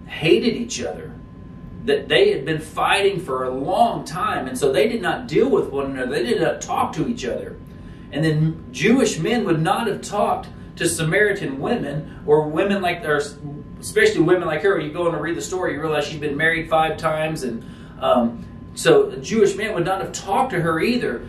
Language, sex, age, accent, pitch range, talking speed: English, male, 40-59, American, 150-195 Hz, 210 wpm